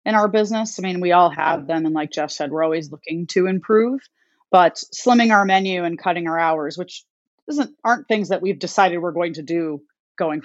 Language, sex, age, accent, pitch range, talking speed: English, female, 30-49, American, 165-215 Hz, 220 wpm